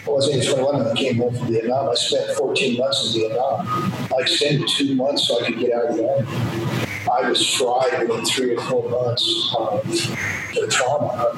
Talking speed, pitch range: 210 wpm, 120-150 Hz